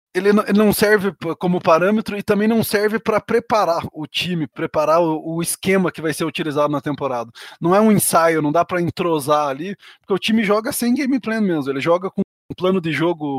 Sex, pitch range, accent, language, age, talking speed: male, 150-190 Hz, Brazilian, Portuguese, 20-39, 205 wpm